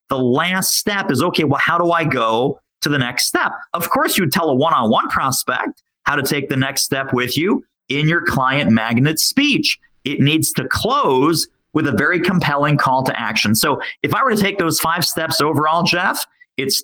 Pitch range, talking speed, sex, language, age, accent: 135-185 Hz, 205 wpm, male, English, 40-59, American